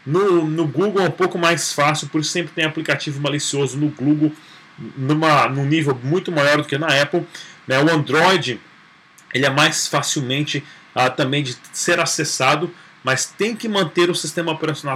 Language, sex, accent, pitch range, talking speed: Portuguese, male, Brazilian, 150-185 Hz, 165 wpm